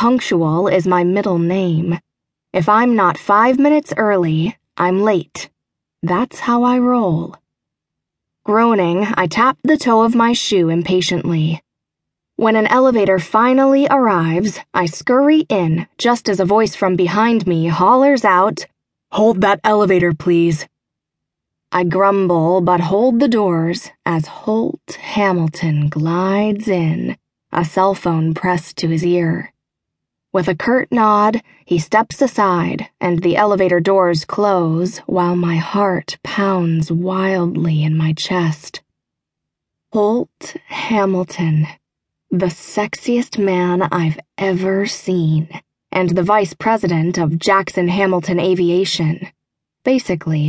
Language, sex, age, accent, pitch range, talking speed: English, female, 20-39, American, 170-215 Hz, 120 wpm